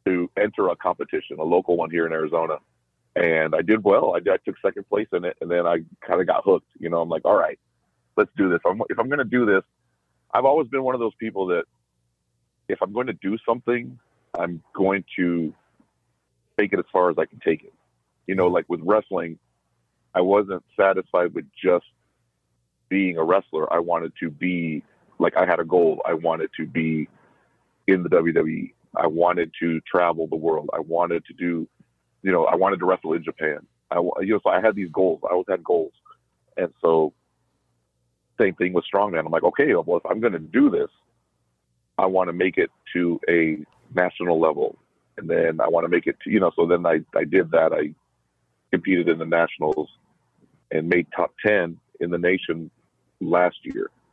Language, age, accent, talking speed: English, 40-59, American, 205 wpm